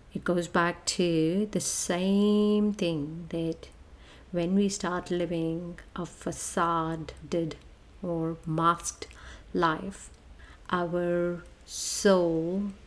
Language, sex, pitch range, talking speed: English, female, 160-190 Hz, 90 wpm